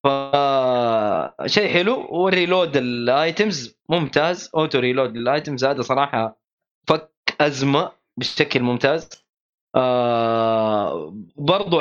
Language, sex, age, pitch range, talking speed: Arabic, male, 20-39, 130-170 Hz, 80 wpm